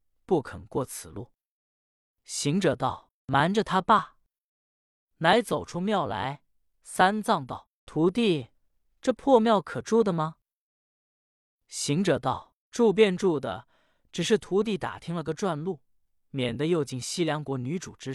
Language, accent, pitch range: Chinese, native, 155-230 Hz